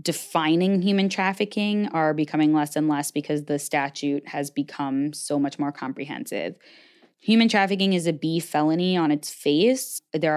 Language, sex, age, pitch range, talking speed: English, female, 20-39, 150-195 Hz, 155 wpm